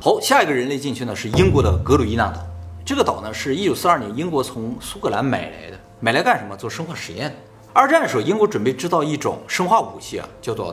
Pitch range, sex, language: 105-175 Hz, male, Chinese